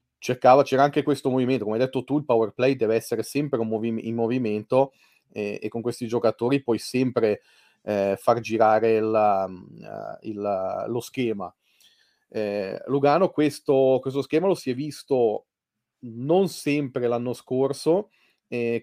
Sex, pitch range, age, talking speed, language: male, 115-135 Hz, 30-49, 155 wpm, Italian